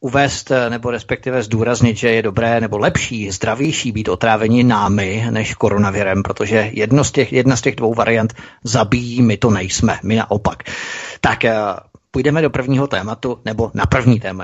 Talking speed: 160 wpm